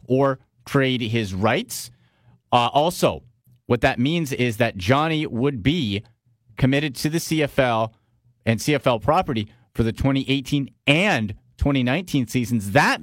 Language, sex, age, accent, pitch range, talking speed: English, male, 40-59, American, 120-150 Hz, 130 wpm